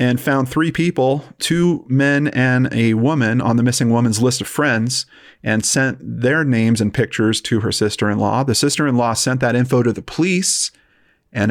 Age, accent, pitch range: 40-59, American, 120-150 Hz